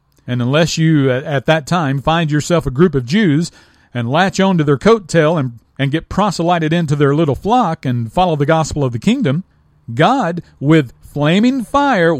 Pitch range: 135-190 Hz